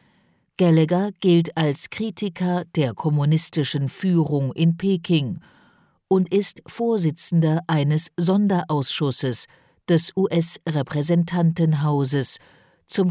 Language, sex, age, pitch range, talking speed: English, female, 50-69, 145-180 Hz, 80 wpm